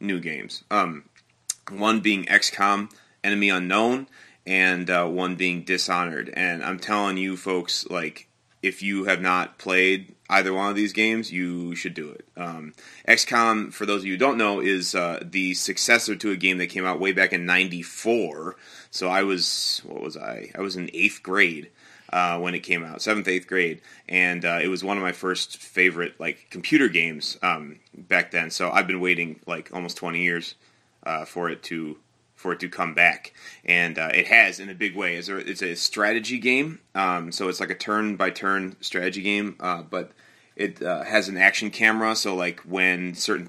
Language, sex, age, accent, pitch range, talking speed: English, male, 30-49, American, 90-100 Hz, 190 wpm